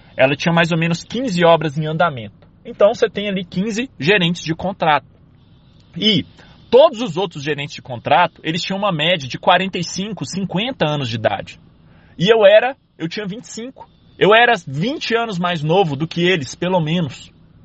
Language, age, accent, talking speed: Portuguese, 20-39, Brazilian, 175 wpm